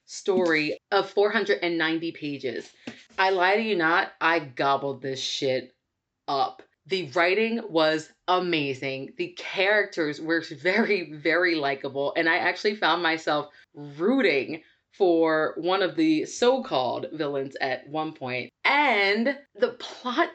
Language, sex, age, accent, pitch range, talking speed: English, female, 20-39, American, 165-235 Hz, 125 wpm